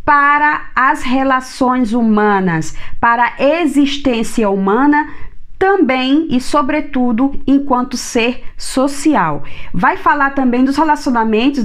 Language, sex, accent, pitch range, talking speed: Portuguese, female, Brazilian, 220-290 Hz, 100 wpm